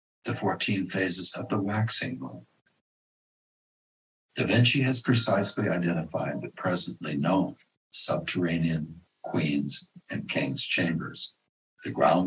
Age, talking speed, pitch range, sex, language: 60-79, 110 wpm, 85-105 Hz, male, English